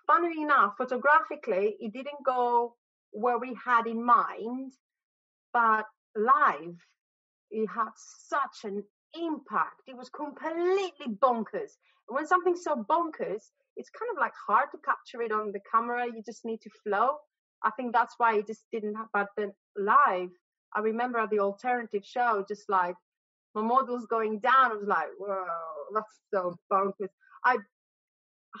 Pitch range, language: 200-245 Hz, English